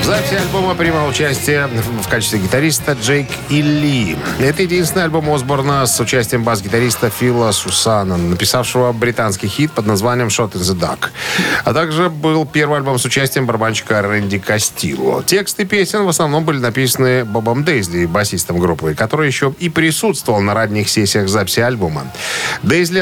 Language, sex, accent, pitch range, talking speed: Russian, male, native, 100-145 Hz, 150 wpm